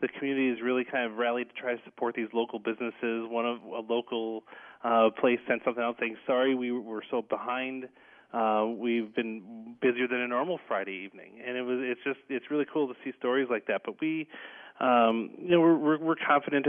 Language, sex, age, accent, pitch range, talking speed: English, male, 30-49, American, 115-135 Hz, 210 wpm